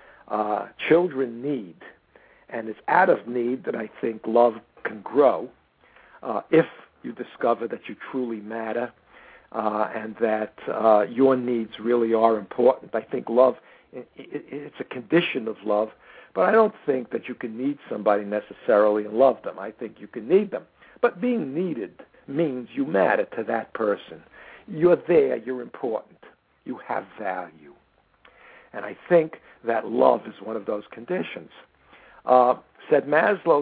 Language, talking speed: English, 155 wpm